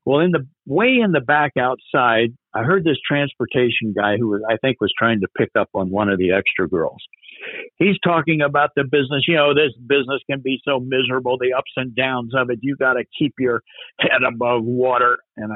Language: English